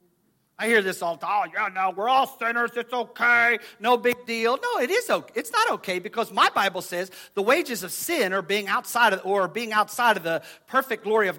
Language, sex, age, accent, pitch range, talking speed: English, male, 40-59, American, 205-300 Hz, 225 wpm